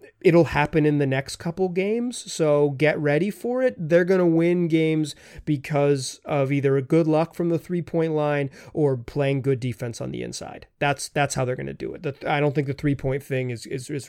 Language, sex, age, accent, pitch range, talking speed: English, male, 30-49, American, 135-180 Hz, 220 wpm